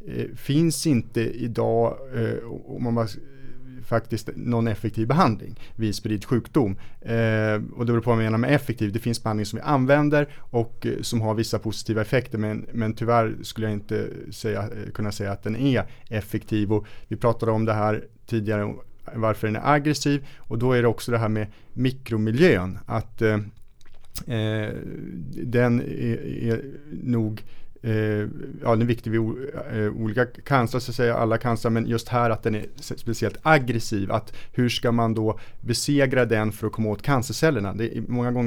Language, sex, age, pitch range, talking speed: Swedish, male, 30-49, 105-120 Hz, 165 wpm